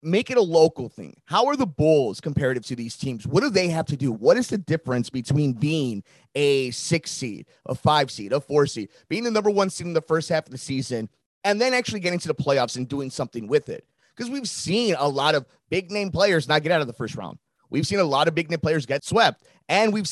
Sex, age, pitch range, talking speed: male, 30-49, 145-205 Hz, 250 wpm